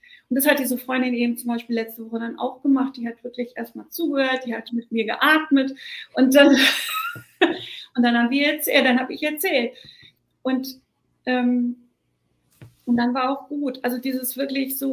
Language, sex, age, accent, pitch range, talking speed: German, female, 40-59, German, 240-275 Hz, 165 wpm